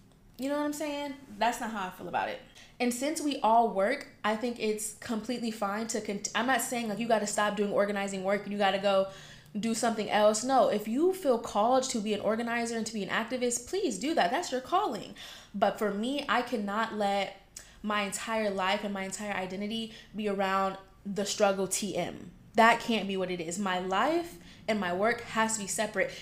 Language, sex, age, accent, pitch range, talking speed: English, female, 20-39, American, 200-240 Hz, 215 wpm